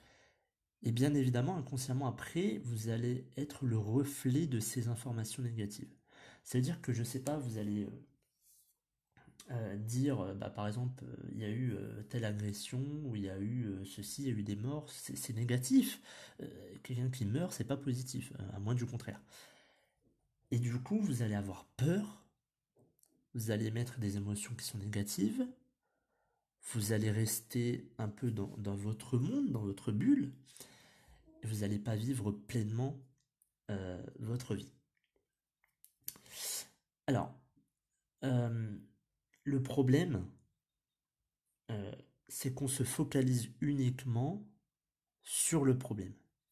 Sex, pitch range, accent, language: male, 105-135 Hz, French, French